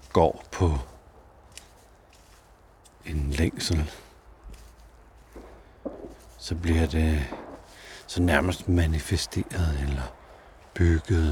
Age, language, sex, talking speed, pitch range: 60-79, Danish, male, 65 wpm, 70-90 Hz